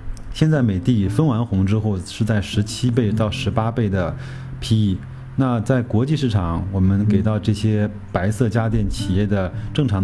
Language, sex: Chinese, male